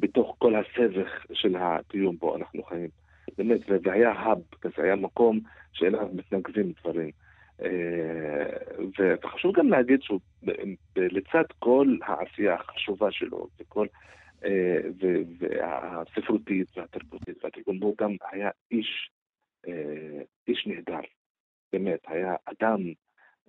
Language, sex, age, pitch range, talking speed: Hebrew, male, 50-69, 90-110 Hz, 100 wpm